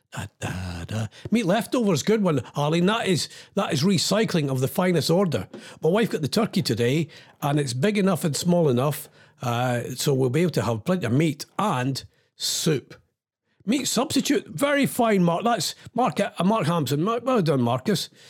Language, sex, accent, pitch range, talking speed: English, male, British, 130-190 Hz, 175 wpm